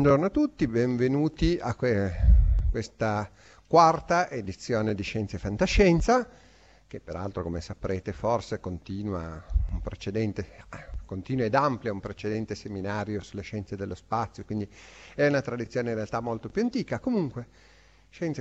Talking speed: 135 wpm